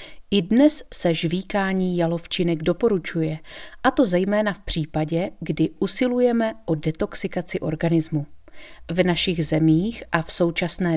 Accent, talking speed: native, 120 wpm